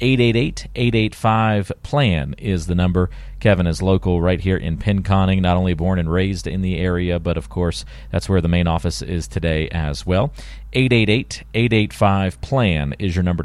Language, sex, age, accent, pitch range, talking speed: English, male, 40-59, American, 85-115 Hz, 155 wpm